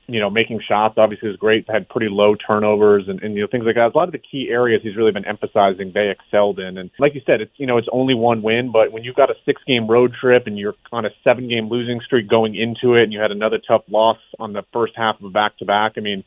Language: English